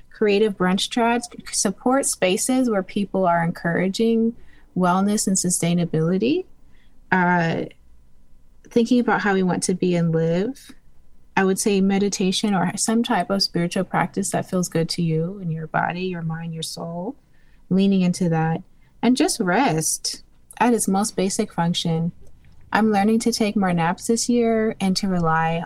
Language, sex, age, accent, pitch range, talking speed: English, female, 20-39, American, 170-215 Hz, 155 wpm